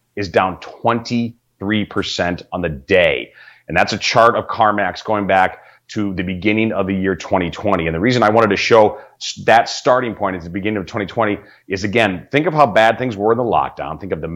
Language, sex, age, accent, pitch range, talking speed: English, male, 30-49, American, 95-120 Hz, 210 wpm